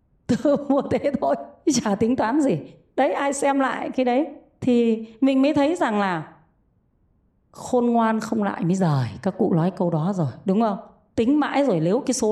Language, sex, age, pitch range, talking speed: Vietnamese, female, 20-39, 195-270 Hz, 190 wpm